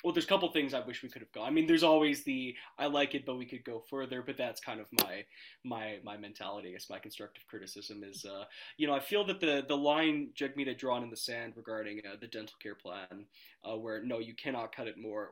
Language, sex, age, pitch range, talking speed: English, male, 20-39, 110-150 Hz, 260 wpm